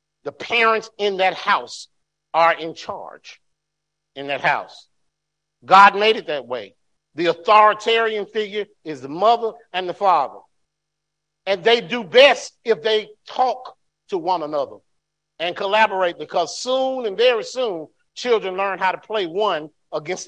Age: 50-69